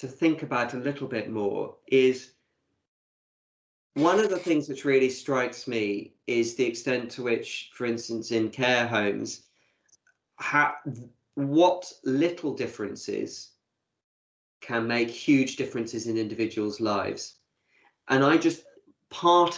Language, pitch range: English, 115-145 Hz